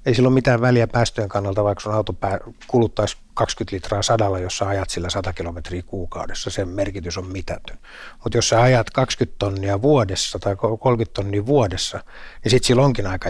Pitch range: 95-115 Hz